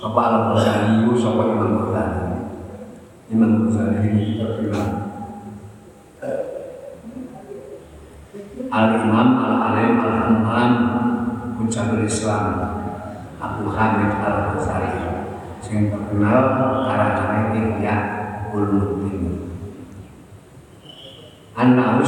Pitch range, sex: 105-120 Hz, male